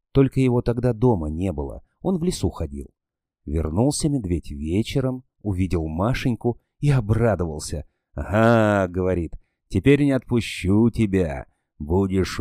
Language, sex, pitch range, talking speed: Russian, male, 85-130 Hz, 115 wpm